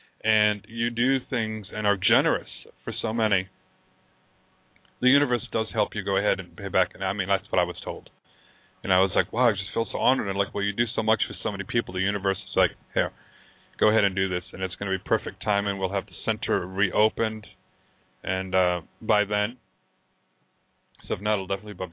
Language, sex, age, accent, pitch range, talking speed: English, male, 30-49, American, 95-110 Hz, 225 wpm